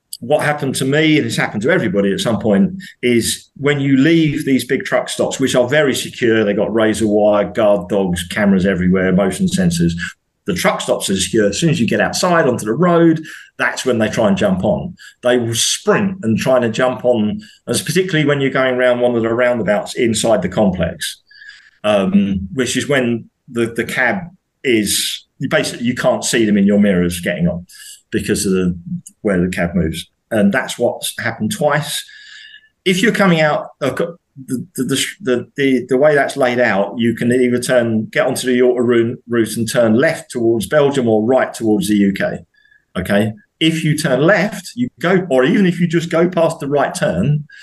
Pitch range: 110-170 Hz